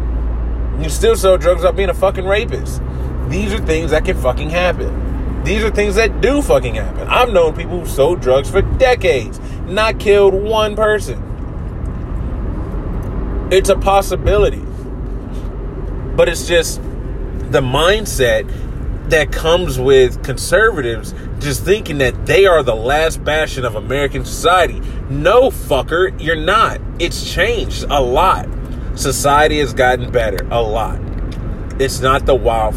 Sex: male